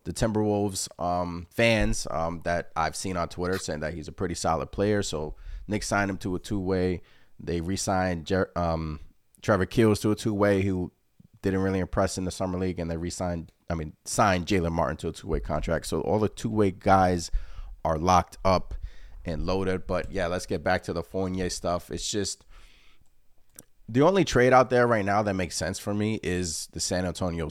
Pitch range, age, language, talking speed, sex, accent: 85-100 Hz, 30-49, English, 195 wpm, male, American